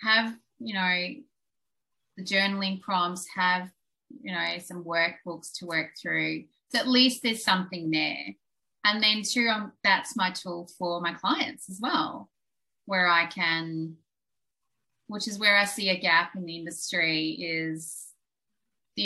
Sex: female